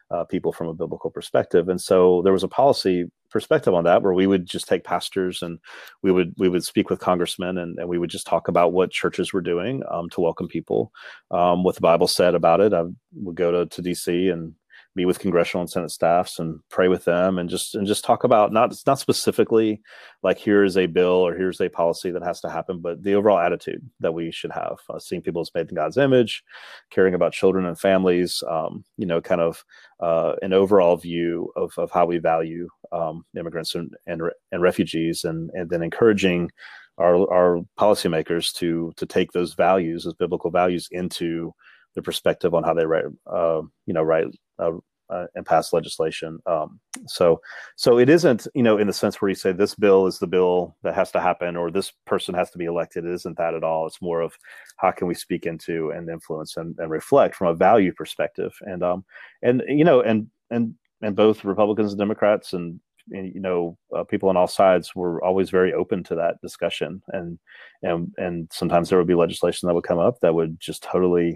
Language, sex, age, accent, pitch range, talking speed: English, male, 30-49, American, 85-95 Hz, 215 wpm